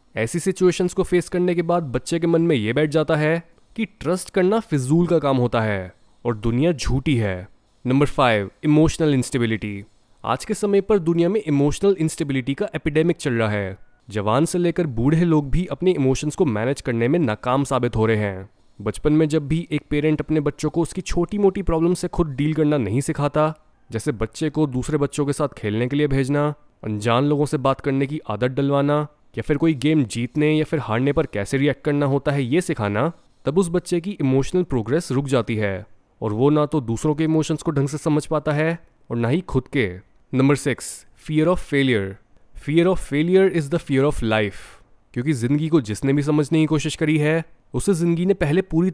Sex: male